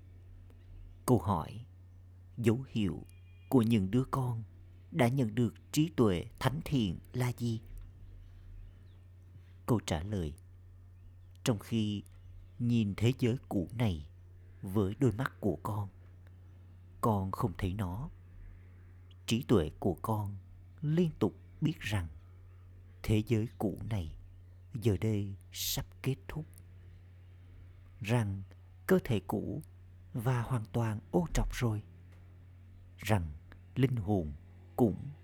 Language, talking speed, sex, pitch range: Vietnamese, 115 wpm, male, 90-115 Hz